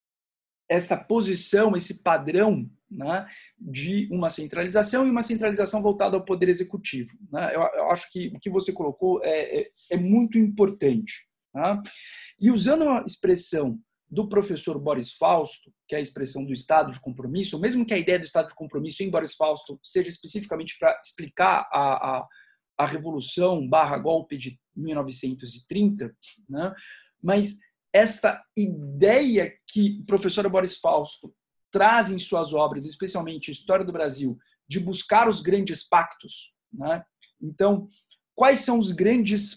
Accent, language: Brazilian, Portuguese